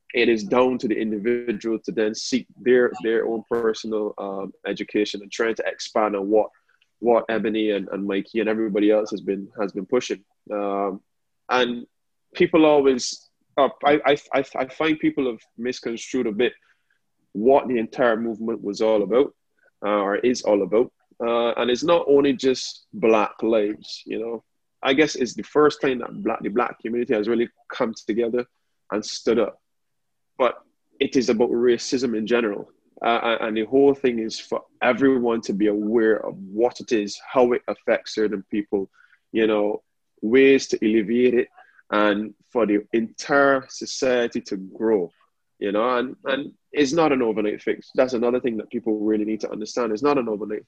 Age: 20-39